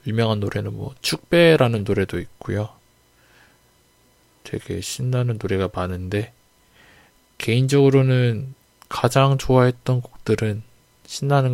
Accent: native